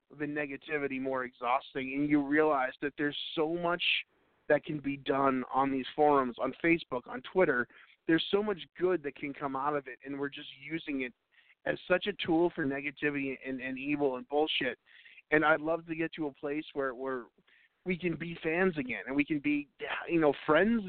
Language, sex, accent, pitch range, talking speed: English, male, American, 140-170 Hz, 200 wpm